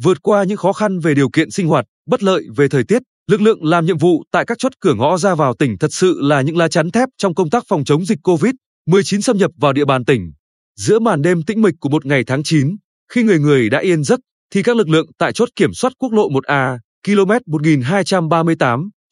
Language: Vietnamese